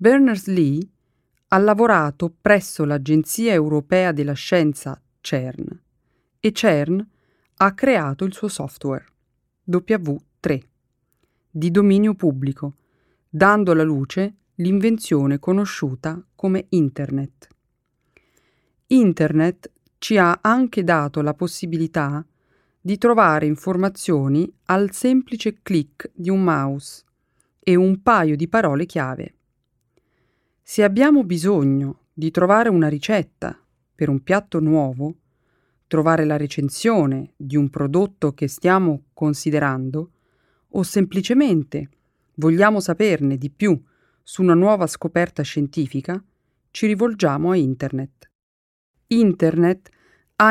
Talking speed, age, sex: 100 wpm, 40-59, female